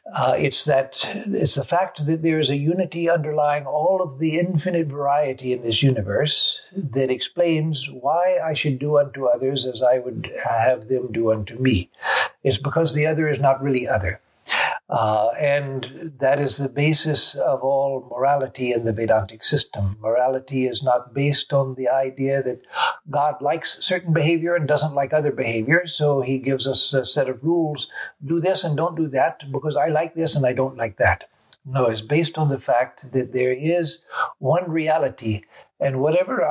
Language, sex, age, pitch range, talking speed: English, male, 60-79, 130-155 Hz, 180 wpm